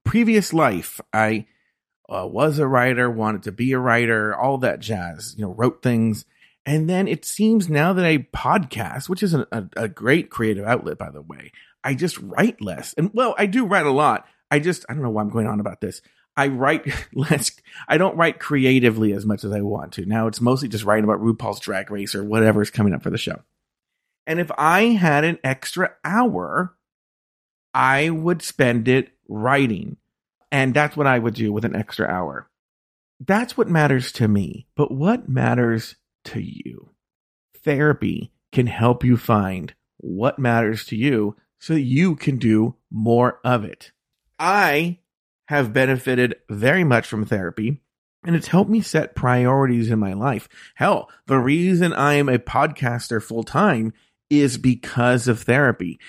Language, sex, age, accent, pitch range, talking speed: English, male, 40-59, American, 110-150 Hz, 175 wpm